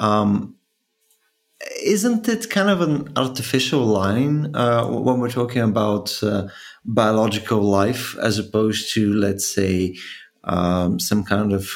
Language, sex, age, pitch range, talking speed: Bulgarian, male, 30-49, 100-130 Hz, 130 wpm